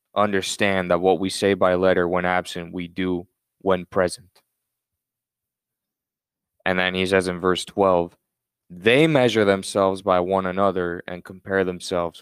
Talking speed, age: 140 wpm, 20-39